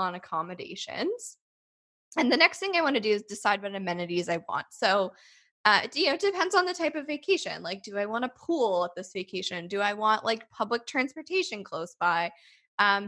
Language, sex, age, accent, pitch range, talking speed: English, female, 10-29, American, 185-255 Hz, 200 wpm